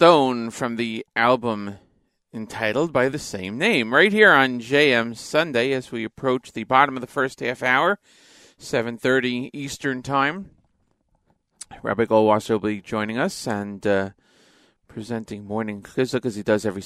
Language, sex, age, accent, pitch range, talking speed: English, male, 40-59, American, 120-160 Hz, 150 wpm